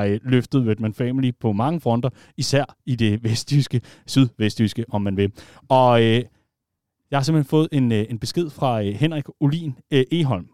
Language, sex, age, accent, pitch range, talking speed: Danish, male, 30-49, native, 105-145 Hz, 165 wpm